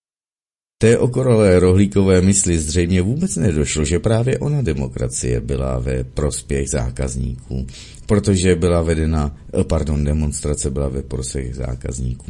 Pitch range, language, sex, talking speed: 75-95 Hz, Czech, male, 115 wpm